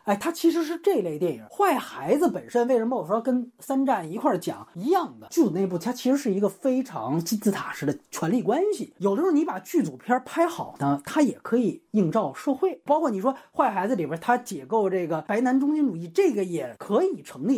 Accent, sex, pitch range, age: native, male, 175-260 Hz, 30-49